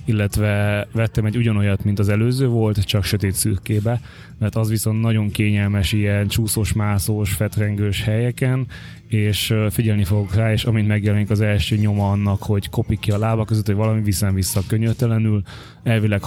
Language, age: Hungarian, 20-39